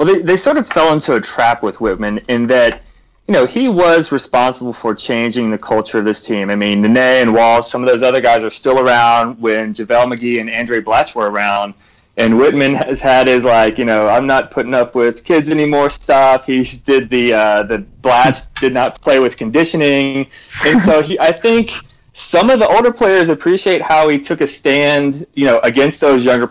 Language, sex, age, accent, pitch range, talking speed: English, male, 30-49, American, 110-140 Hz, 215 wpm